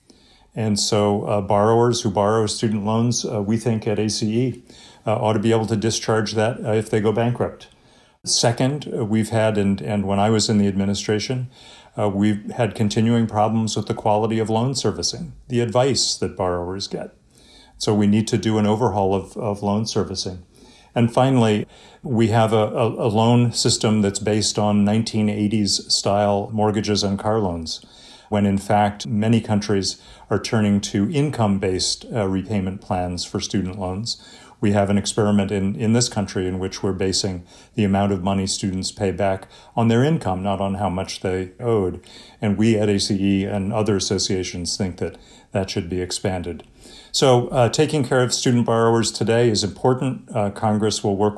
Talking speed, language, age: 175 wpm, English, 40-59